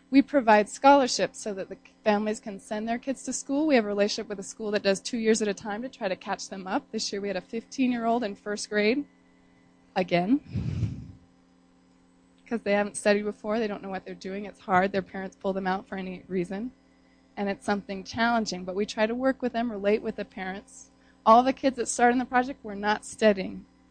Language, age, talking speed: English, 20-39, 230 wpm